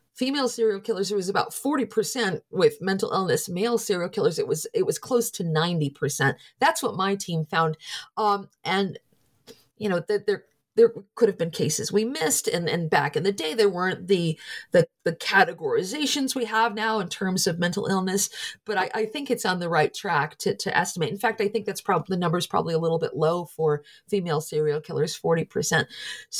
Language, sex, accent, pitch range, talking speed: English, female, American, 185-240 Hz, 200 wpm